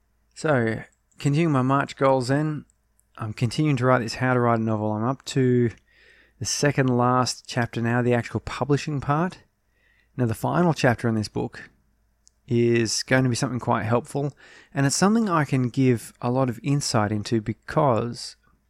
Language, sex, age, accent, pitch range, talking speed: English, male, 20-39, Australian, 115-135 Hz, 175 wpm